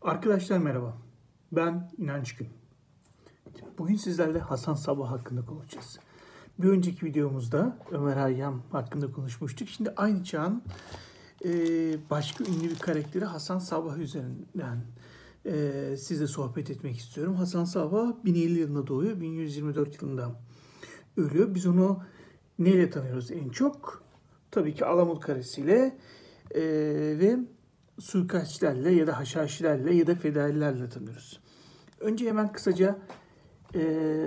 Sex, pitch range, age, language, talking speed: male, 145-185 Hz, 60-79, Turkish, 110 wpm